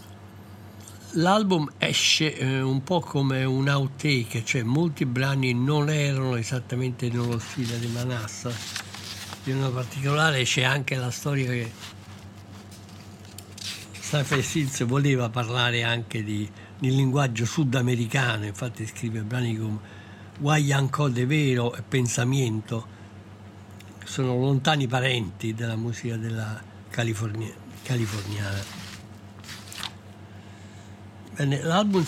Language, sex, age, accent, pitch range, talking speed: Italian, male, 60-79, native, 105-135 Hz, 95 wpm